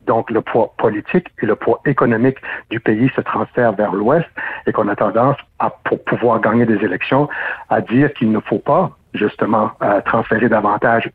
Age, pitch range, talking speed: 60-79, 110-135 Hz, 180 wpm